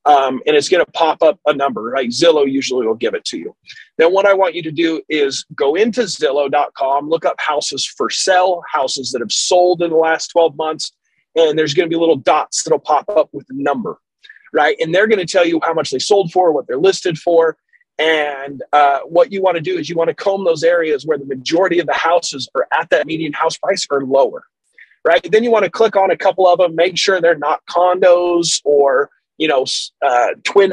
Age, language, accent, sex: 30-49, English, American, male